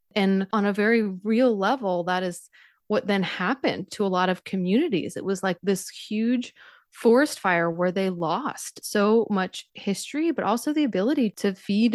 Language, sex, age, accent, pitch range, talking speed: English, female, 20-39, American, 180-220 Hz, 175 wpm